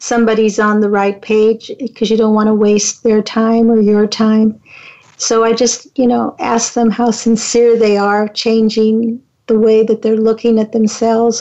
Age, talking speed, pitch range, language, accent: 50-69, 185 wpm, 215-235 Hz, English, American